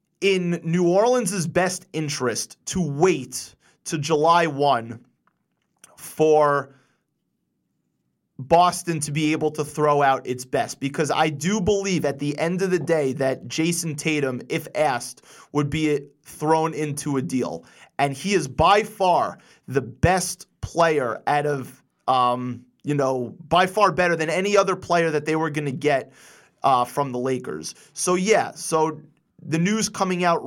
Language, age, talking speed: English, 30-49, 155 wpm